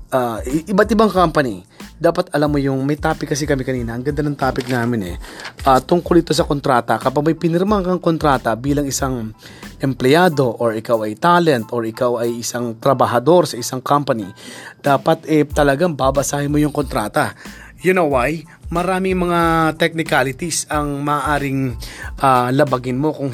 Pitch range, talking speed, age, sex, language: 130-155 Hz, 160 wpm, 20-39, male, Filipino